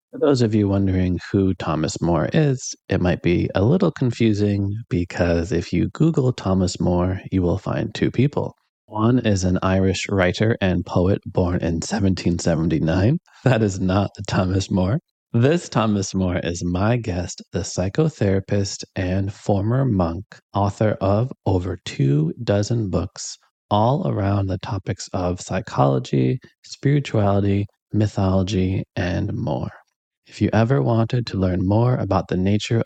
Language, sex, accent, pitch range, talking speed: English, male, American, 90-115 Hz, 140 wpm